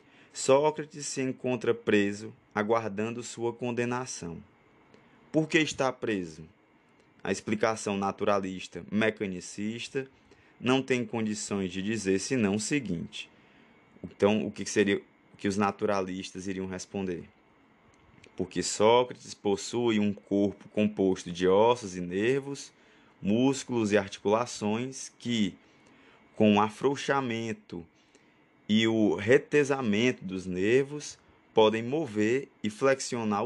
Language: Portuguese